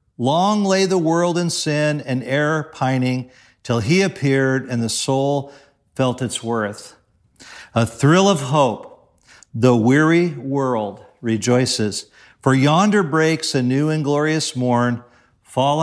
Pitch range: 125-150 Hz